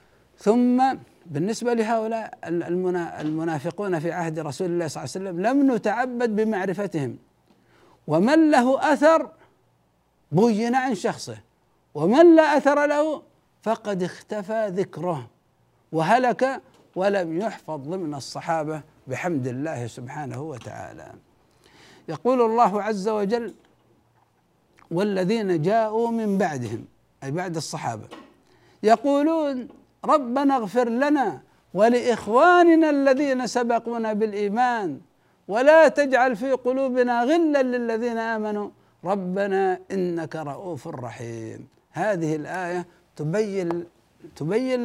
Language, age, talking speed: Arabic, 60-79, 95 wpm